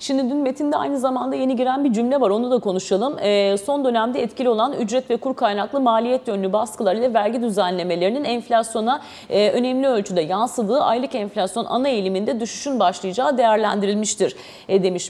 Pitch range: 195-265 Hz